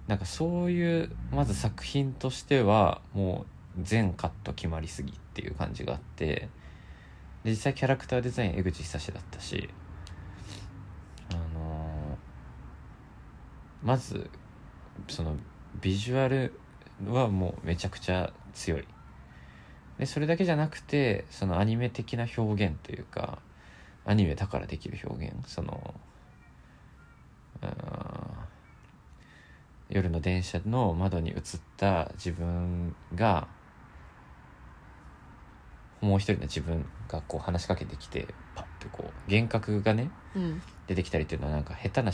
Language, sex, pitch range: Japanese, male, 80-105 Hz